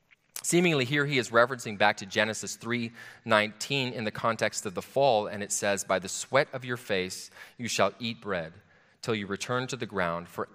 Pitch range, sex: 100-130 Hz, male